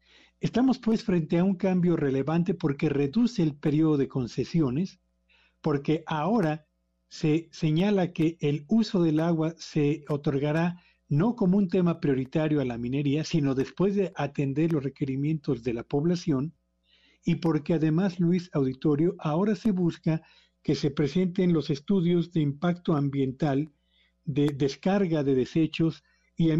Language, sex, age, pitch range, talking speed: Spanish, male, 50-69, 140-175 Hz, 140 wpm